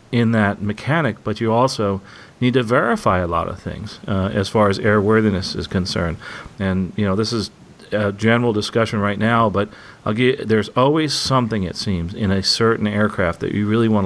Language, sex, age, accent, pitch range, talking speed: English, male, 40-59, American, 95-115 Hz, 190 wpm